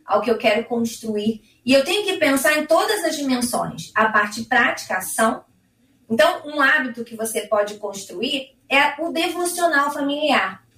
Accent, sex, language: Brazilian, female, Portuguese